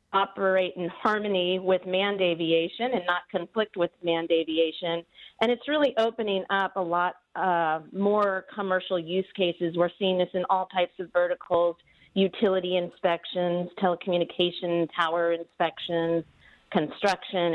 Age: 40-59